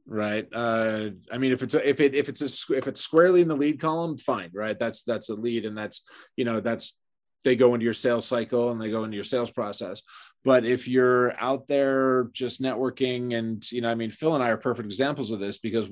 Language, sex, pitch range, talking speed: English, male, 115-135 Hz, 245 wpm